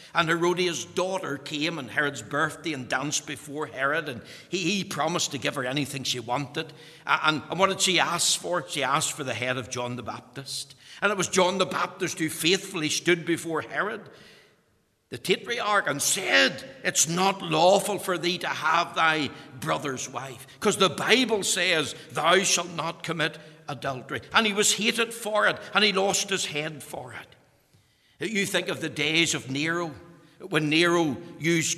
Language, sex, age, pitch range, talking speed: English, male, 60-79, 145-180 Hz, 180 wpm